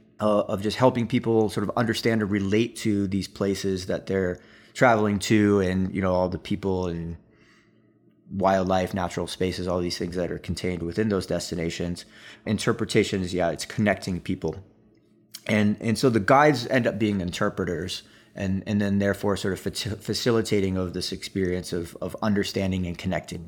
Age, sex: 20-39, male